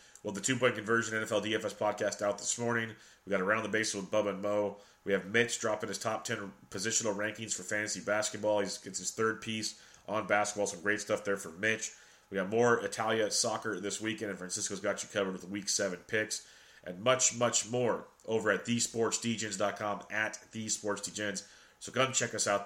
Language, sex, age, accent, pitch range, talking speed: English, male, 30-49, American, 100-115 Hz, 195 wpm